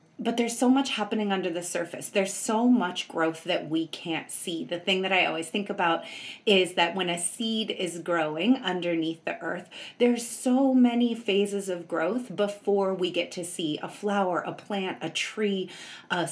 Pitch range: 180-230 Hz